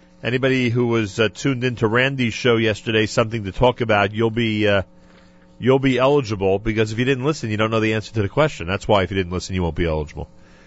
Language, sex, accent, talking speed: English, male, American, 235 wpm